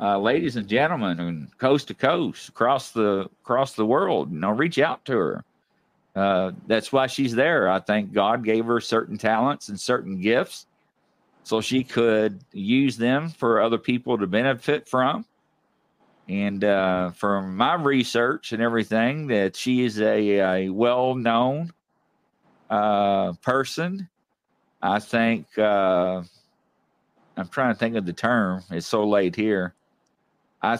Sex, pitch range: male, 95-125 Hz